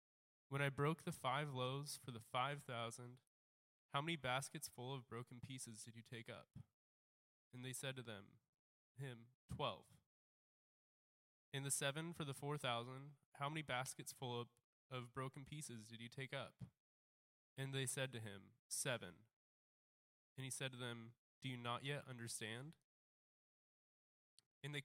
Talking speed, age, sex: 155 wpm, 20-39, male